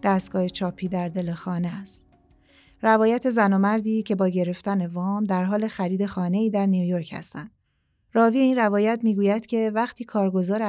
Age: 30-49